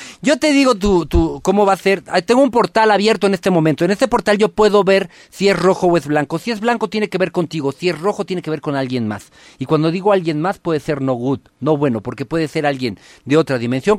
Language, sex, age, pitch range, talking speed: Spanish, male, 50-69, 130-195 Hz, 265 wpm